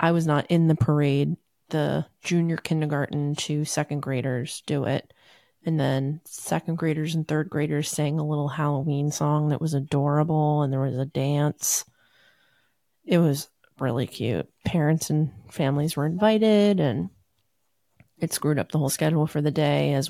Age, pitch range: 30-49, 140-175 Hz